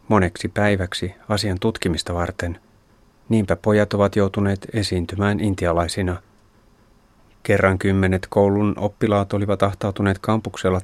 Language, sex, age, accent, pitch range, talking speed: Finnish, male, 30-49, native, 95-105 Hz, 100 wpm